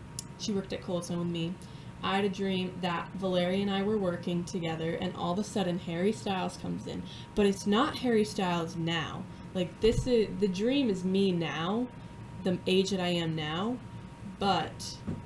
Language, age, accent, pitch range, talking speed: English, 10-29, American, 170-200 Hz, 185 wpm